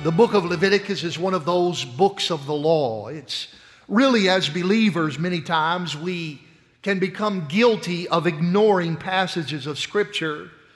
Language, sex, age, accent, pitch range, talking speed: English, male, 50-69, American, 160-205 Hz, 150 wpm